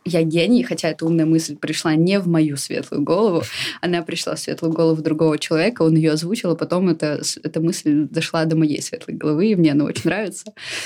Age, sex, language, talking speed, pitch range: 20-39, female, Russian, 205 wpm, 160-185 Hz